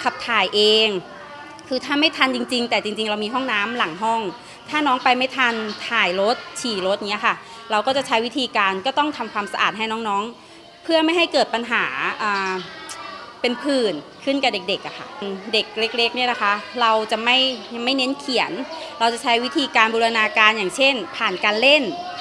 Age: 20-39